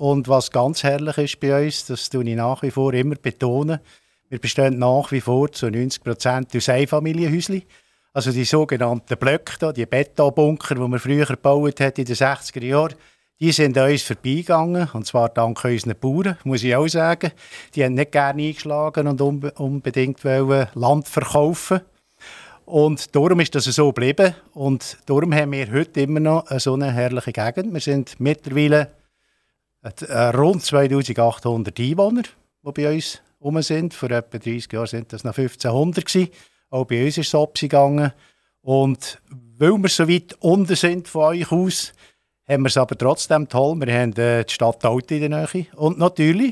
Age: 50-69